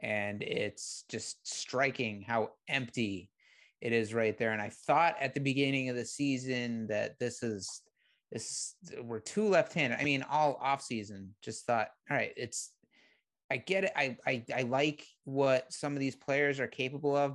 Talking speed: 180 wpm